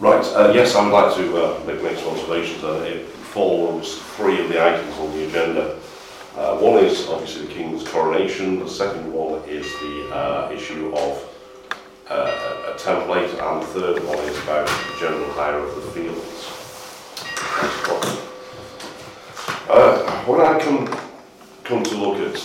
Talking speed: 165 wpm